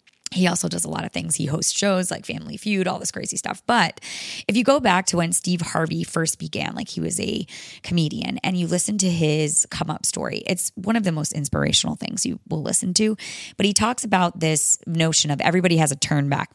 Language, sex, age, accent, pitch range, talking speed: English, female, 20-39, American, 160-200 Hz, 230 wpm